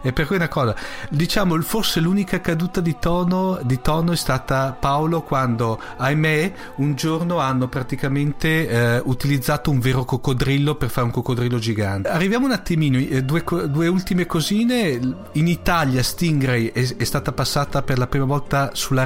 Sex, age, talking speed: male, 40-59, 155 wpm